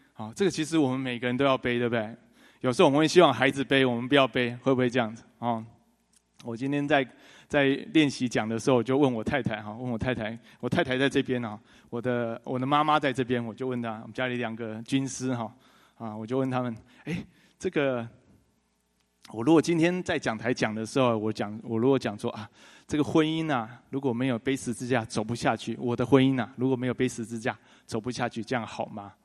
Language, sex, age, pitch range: English, male, 20-39, 115-135 Hz